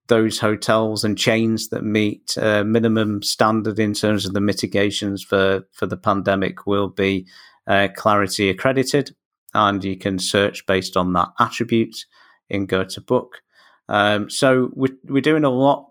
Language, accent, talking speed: English, British, 160 wpm